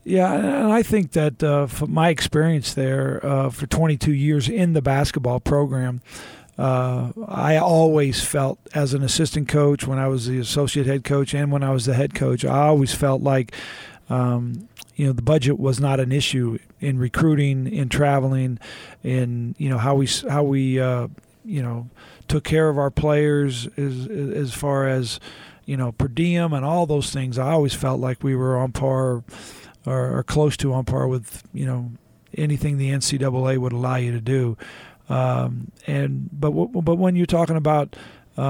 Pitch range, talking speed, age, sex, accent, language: 130-150 Hz, 185 wpm, 40-59, male, American, English